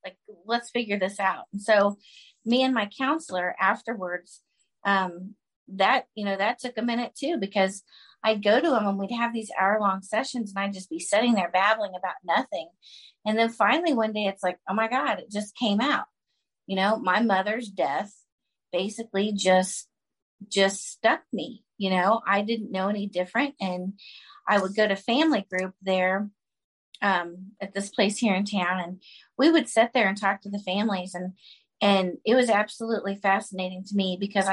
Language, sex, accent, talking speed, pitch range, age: English, female, American, 185 wpm, 185-220 Hz, 30-49